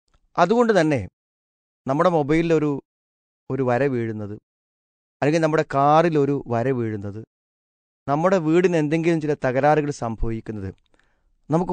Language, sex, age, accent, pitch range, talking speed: Malayalam, male, 30-49, native, 110-160 Hz, 100 wpm